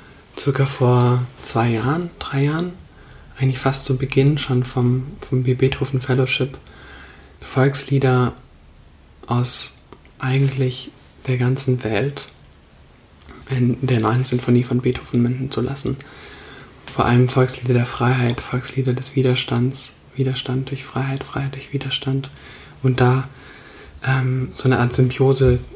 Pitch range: 125-135 Hz